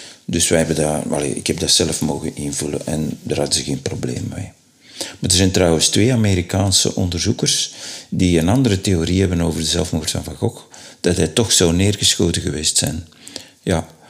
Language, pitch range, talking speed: Dutch, 80-100 Hz, 185 wpm